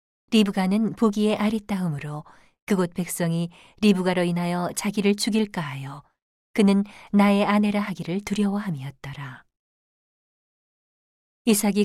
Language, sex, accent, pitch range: Korean, female, native, 165-210 Hz